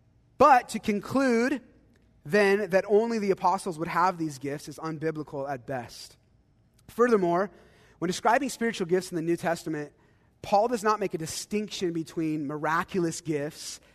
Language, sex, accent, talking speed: English, male, American, 145 wpm